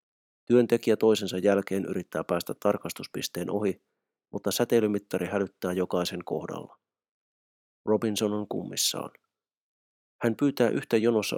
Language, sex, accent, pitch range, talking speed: Finnish, male, native, 90-110 Hz, 100 wpm